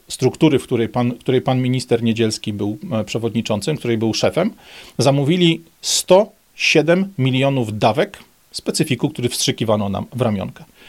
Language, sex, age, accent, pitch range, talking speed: Polish, male, 40-59, native, 115-155 Hz, 130 wpm